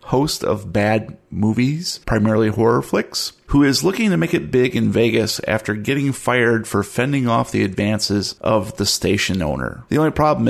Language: English